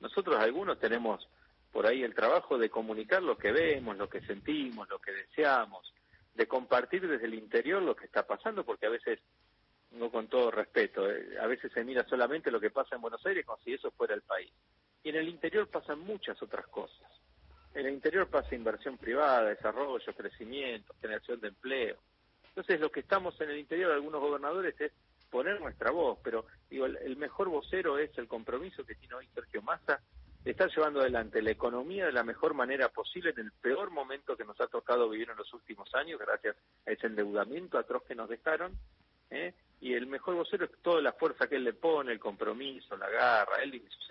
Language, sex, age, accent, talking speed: Spanish, male, 40-59, Argentinian, 205 wpm